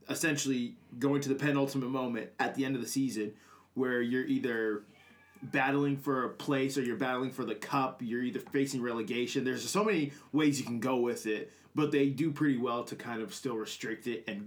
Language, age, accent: English, 20-39, American